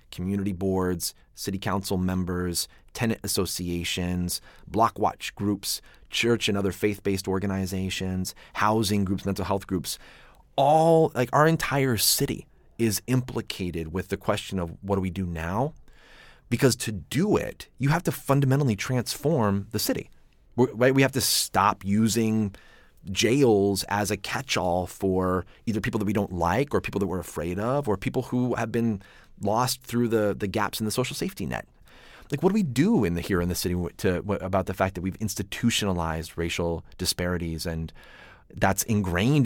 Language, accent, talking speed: English, American, 165 wpm